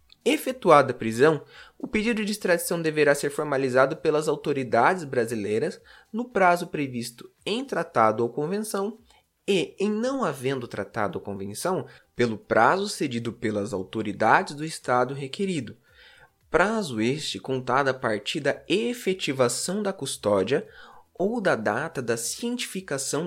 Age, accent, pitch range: 20-39, Brazilian, 120-190 Hz